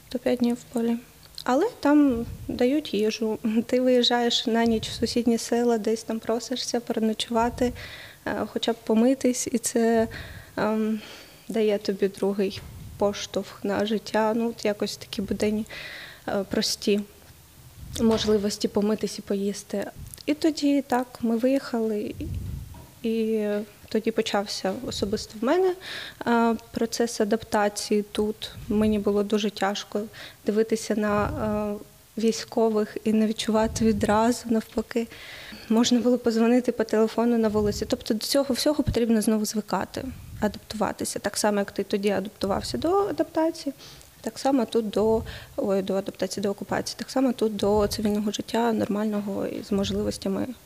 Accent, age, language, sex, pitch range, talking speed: native, 20-39, Ukrainian, female, 210-240 Hz, 130 wpm